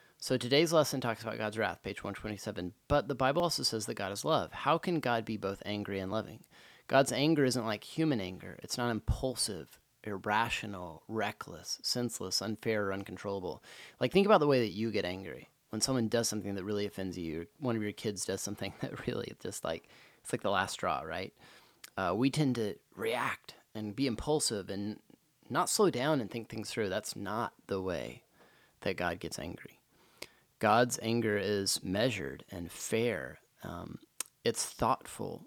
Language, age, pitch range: English, 30-49, 100-125 Hz